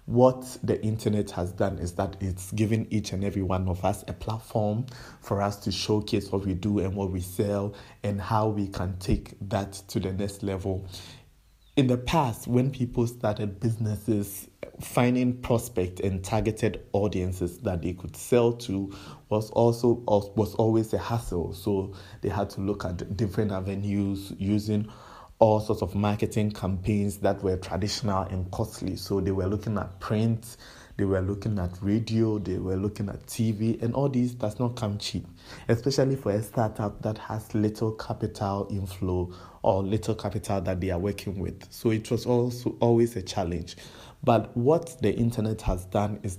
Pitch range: 95-115 Hz